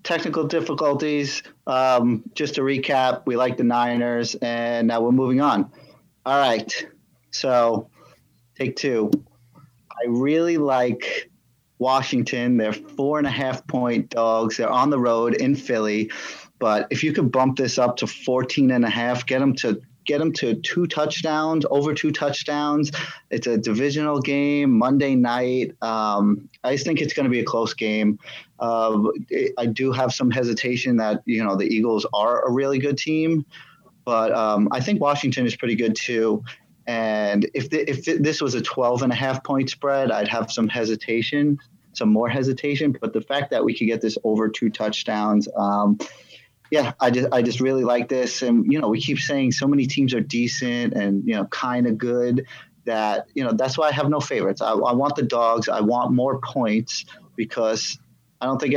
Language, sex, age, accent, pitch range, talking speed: English, male, 30-49, American, 115-145 Hz, 180 wpm